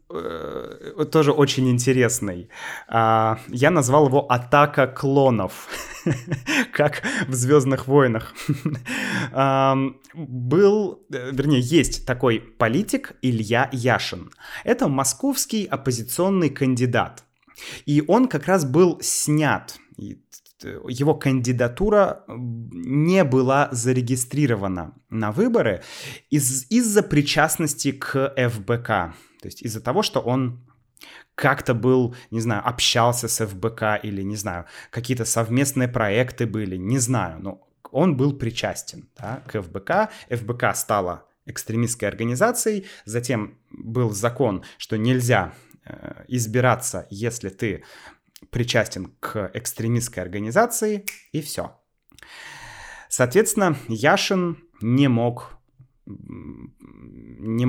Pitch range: 115-150 Hz